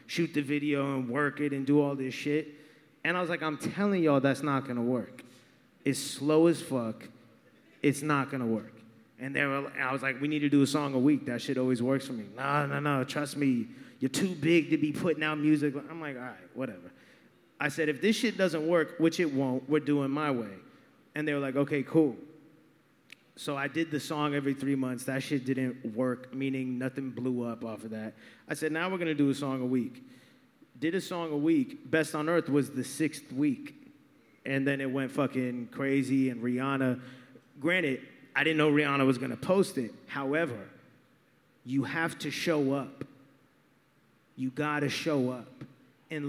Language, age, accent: English, 30-49, American